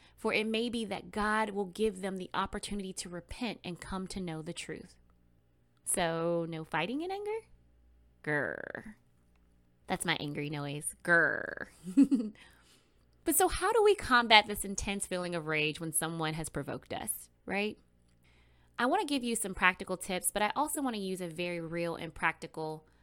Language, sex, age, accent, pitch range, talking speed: English, female, 20-39, American, 155-205 Hz, 170 wpm